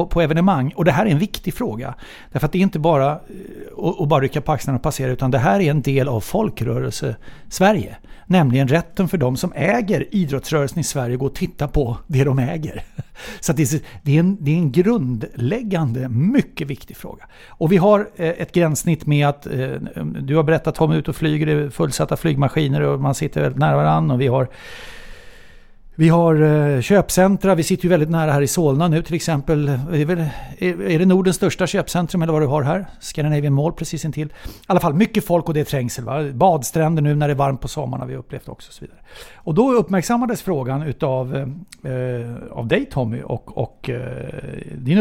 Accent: Swedish